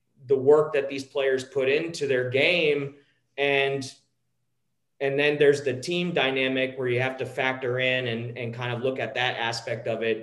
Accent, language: American, English